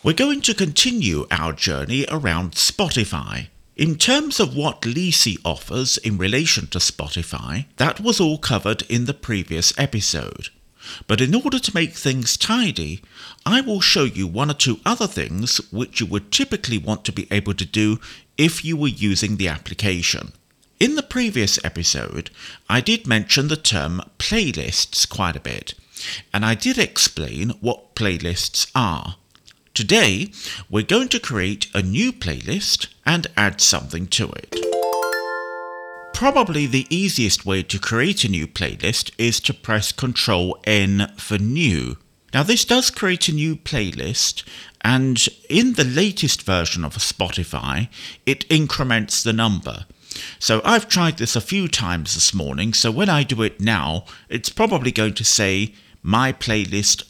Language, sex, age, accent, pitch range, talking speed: English, male, 50-69, British, 90-145 Hz, 155 wpm